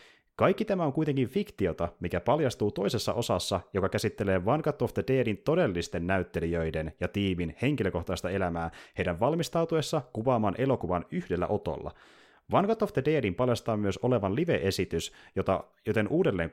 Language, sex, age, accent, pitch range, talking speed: Finnish, male, 30-49, native, 95-135 Hz, 135 wpm